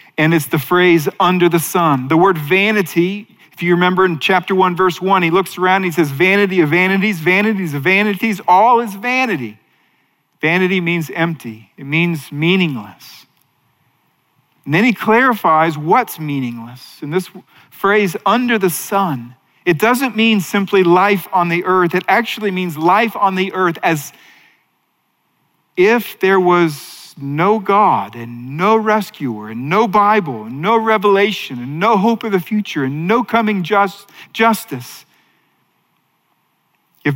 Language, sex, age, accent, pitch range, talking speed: English, male, 40-59, American, 155-205 Hz, 150 wpm